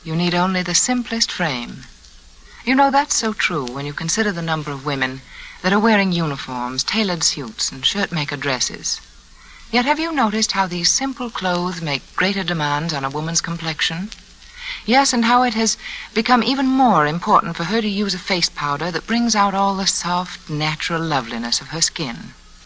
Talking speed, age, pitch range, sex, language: 185 wpm, 60-79, 145-220 Hz, female, English